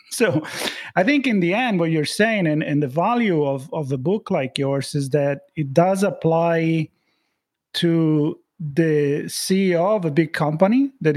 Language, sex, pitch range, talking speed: English, male, 145-180 Hz, 170 wpm